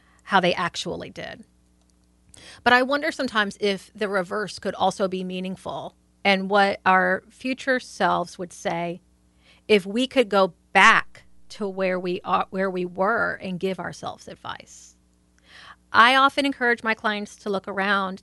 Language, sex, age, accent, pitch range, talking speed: English, female, 40-59, American, 175-230 Hz, 150 wpm